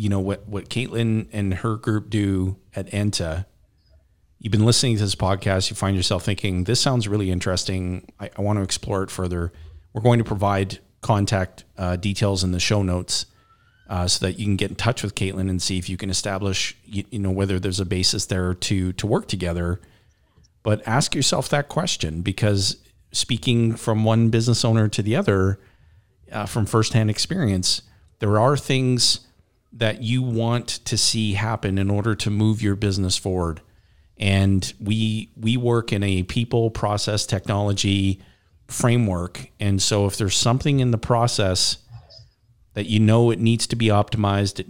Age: 40-59